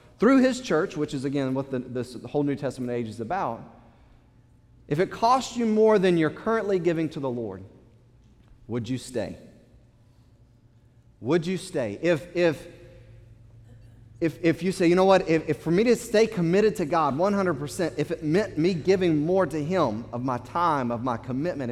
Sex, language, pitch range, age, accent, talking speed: male, English, 120-190 Hz, 30-49, American, 180 wpm